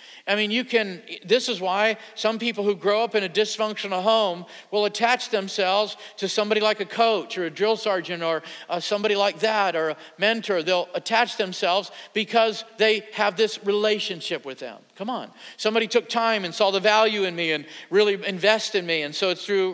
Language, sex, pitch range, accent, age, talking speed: English, male, 180-215 Hz, American, 50-69, 200 wpm